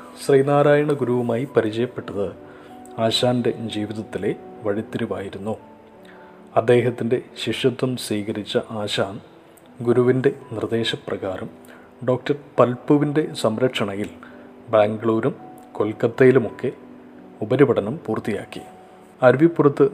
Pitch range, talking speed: 105-125 Hz, 60 wpm